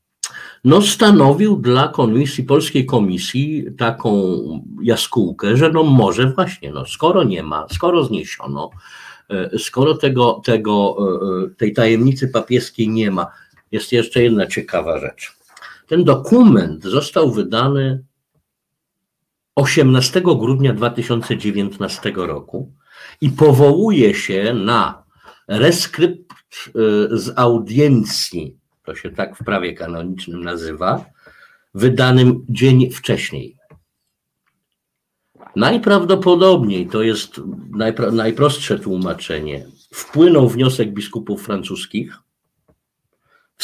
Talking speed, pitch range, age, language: 90 wpm, 110-145 Hz, 50-69, Polish